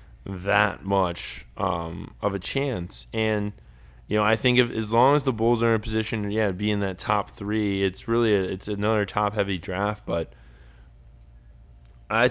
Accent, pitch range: American, 95-110 Hz